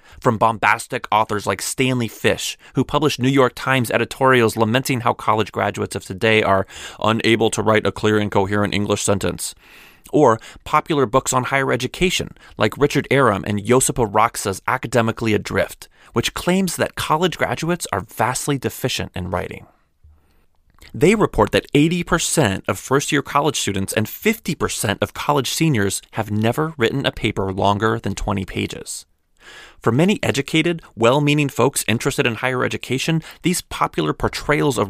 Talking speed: 150 wpm